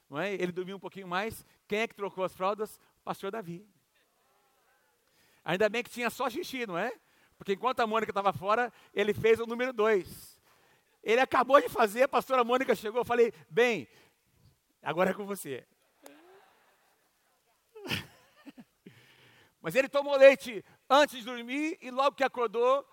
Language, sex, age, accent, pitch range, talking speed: Portuguese, male, 50-69, Brazilian, 185-240 Hz, 155 wpm